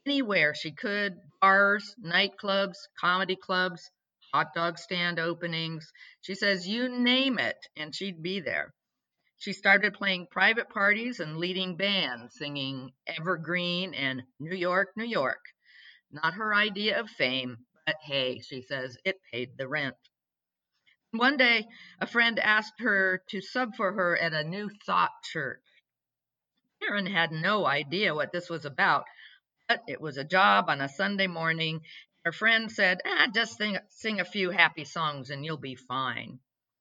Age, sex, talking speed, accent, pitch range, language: 50-69, female, 155 wpm, American, 155-200 Hz, English